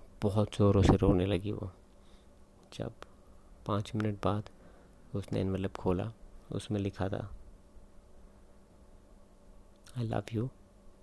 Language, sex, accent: Hindi, male, native